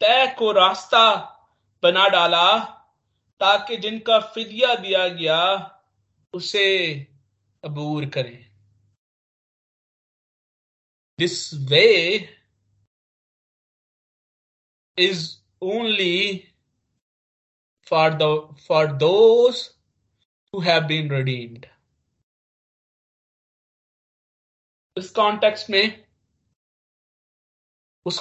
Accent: native